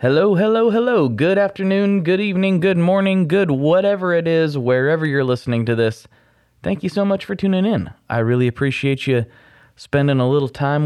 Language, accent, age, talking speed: English, American, 20-39, 180 wpm